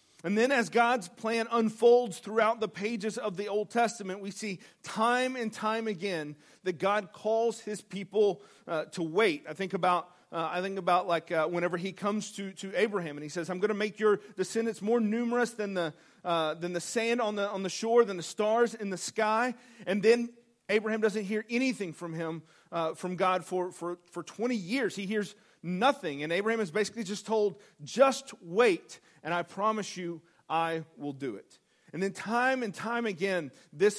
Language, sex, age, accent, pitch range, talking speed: English, male, 40-59, American, 170-220 Hz, 200 wpm